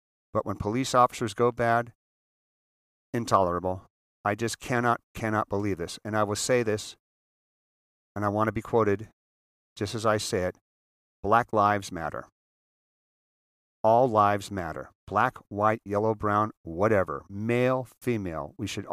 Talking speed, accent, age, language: 140 wpm, American, 40-59, English